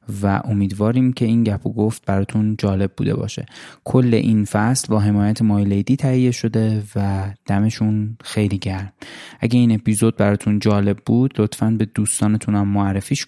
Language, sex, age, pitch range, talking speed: Persian, male, 20-39, 100-115 Hz, 160 wpm